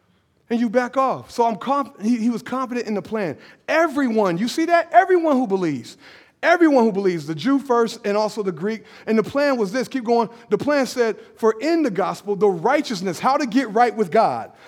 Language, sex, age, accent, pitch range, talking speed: English, male, 30-49, American, 215-275 Hz, 215 wpm